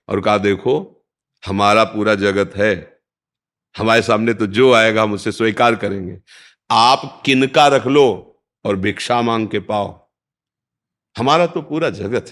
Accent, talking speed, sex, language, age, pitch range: native, 140 wpm, male, Hindi, 50-69, 105-130 Hz